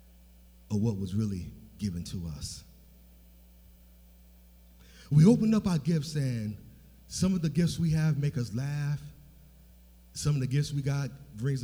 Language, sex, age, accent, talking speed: English, male, 40-59, American, 150 wpm